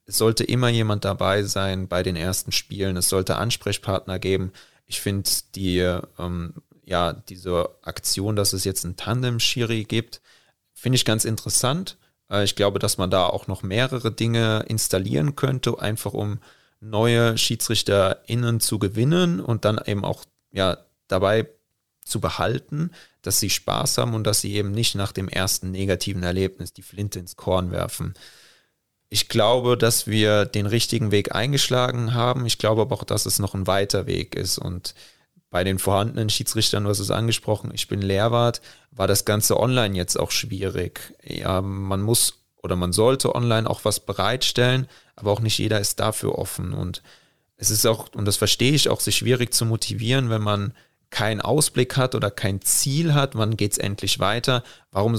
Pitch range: 95-115 Hz